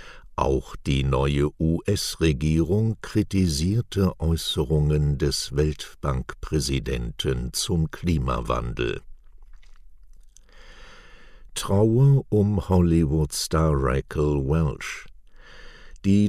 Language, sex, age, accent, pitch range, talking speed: German, male, 60-79, German, 75-95 Hz, 60 wpm